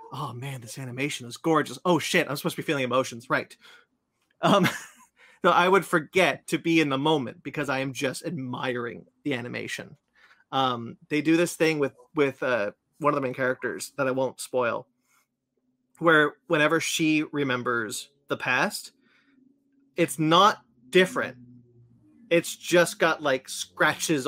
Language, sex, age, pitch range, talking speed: English, male, 30-49, 130-165 Hz, 155 wpm